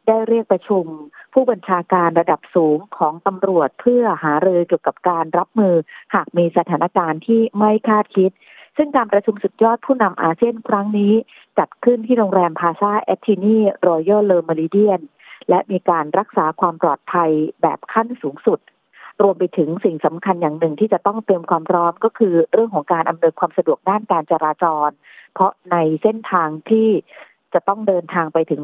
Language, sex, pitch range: Thai, female, 170-215 Hz